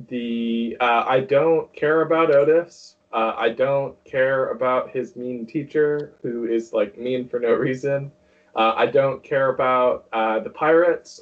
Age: 20-39